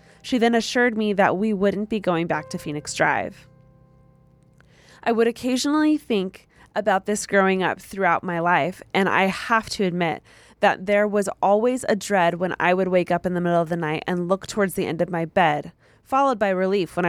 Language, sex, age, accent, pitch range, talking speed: English, female, 20-39, American, 175-220 Hz, 205 wpm